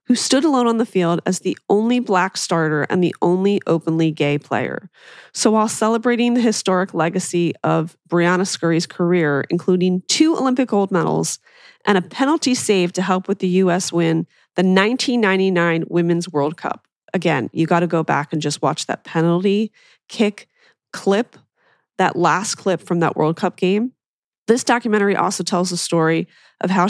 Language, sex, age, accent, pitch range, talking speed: English, female, 30-49, American, 165-215 Hz, 170 wpm